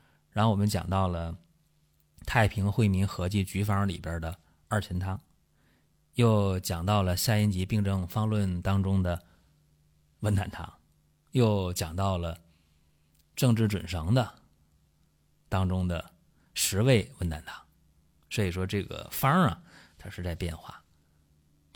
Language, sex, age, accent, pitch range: Chinese, male, 30-49, native, 85-120 Hz